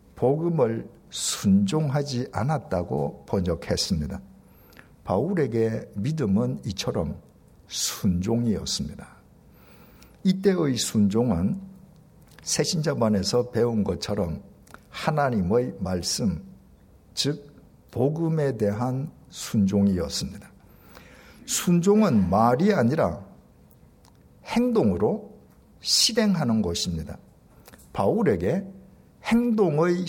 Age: 50-69